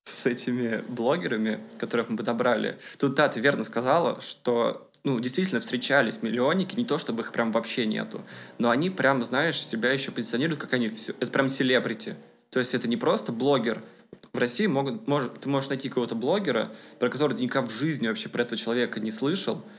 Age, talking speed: 20-39, 190 wpm